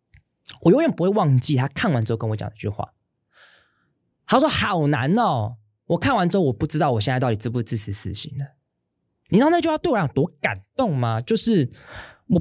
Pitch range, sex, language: 120-185 Hz, male, Chinese